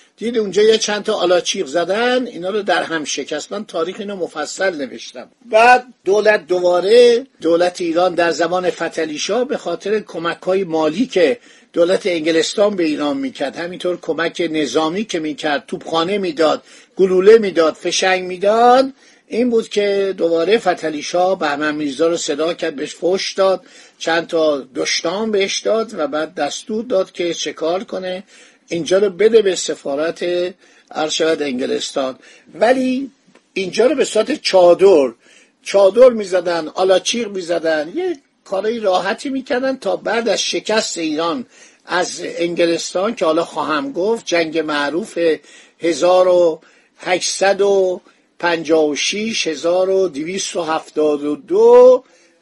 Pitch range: 165-220 Hz